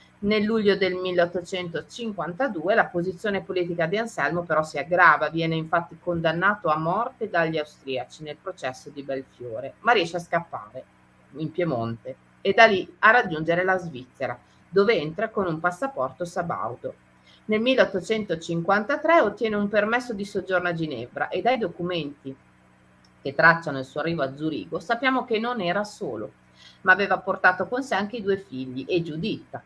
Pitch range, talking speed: 155-205 Hz, 155 wpm